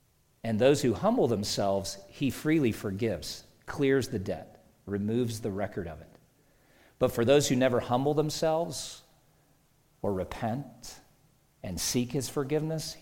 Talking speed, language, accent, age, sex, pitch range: 135 wpm, English, American, 50-69, male, 105-135 Hz